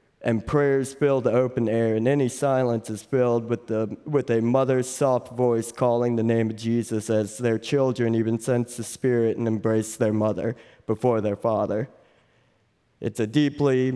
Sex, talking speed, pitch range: male, 170 wpm, 110-135 Hz